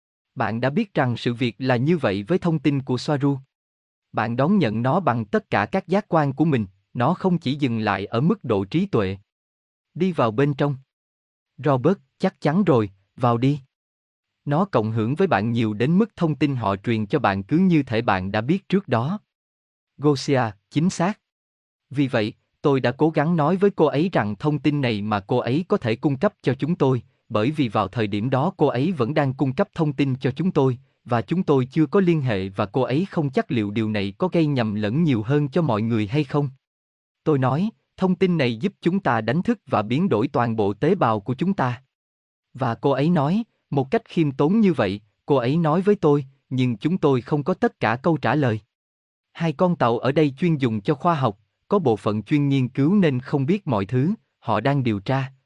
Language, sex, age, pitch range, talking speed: Vietnamese, male, 20-39, 115-160 Hz, 225 wpm